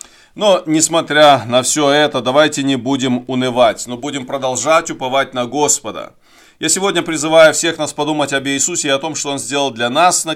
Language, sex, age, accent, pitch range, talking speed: Russian, male, 30-49, native, 115-145 Hz, 185 wpm